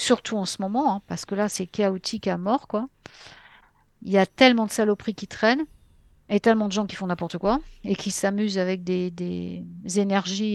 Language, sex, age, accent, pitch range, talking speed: French, female, 50-69, French, 190-230 Hz, 205 wpm